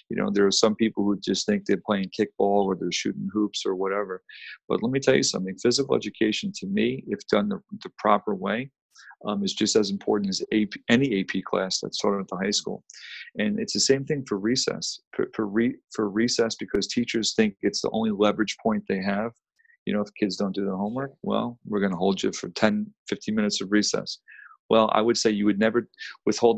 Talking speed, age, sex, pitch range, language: 220 wpm, 40-59, male, 100-115 Hz, English